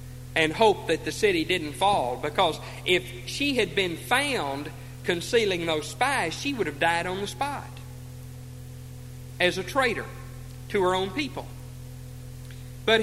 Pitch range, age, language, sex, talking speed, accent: 125-190 Hz, 50-69, English, male, 145 wpm, American